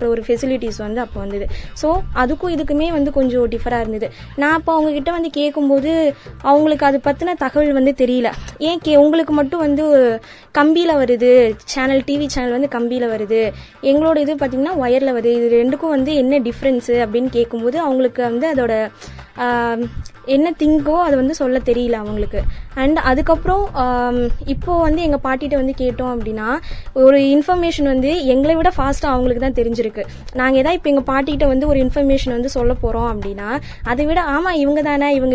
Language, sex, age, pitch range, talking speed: Tamil, female, 20-39, 245-290 Hz, 155 wpm